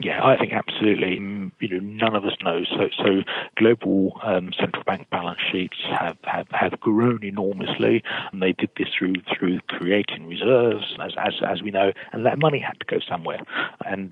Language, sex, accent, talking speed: English, male, British, 185 wpm